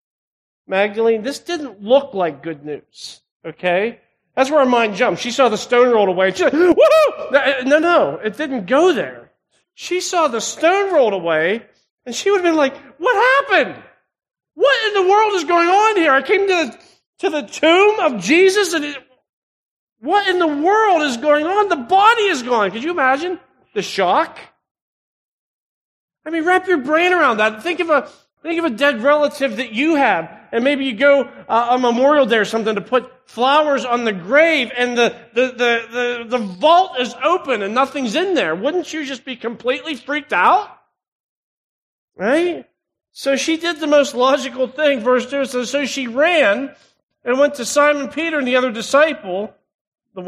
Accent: American